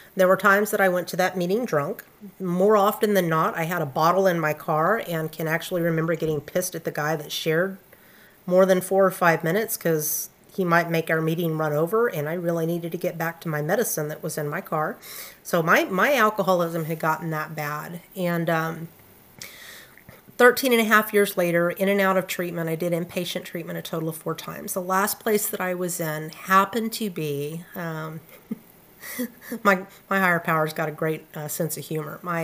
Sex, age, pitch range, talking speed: female, 40-59, 155-190 Hz, 210 wpm